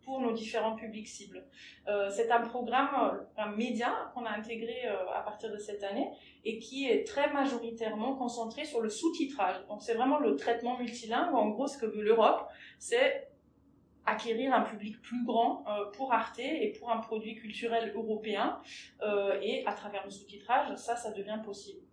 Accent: French